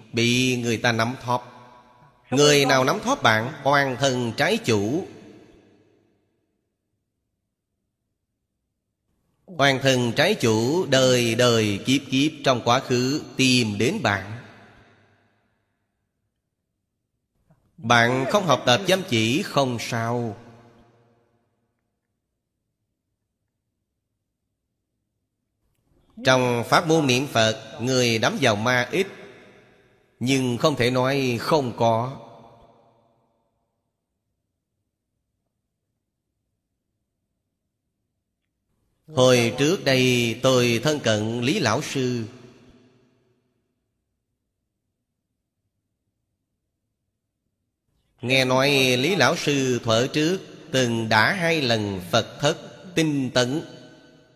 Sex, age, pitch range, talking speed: male, 30-49, 110-130 Hz, 85 wpm